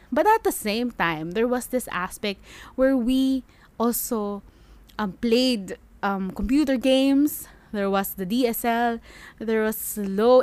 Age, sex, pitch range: 20-39, female, 195-250 Hz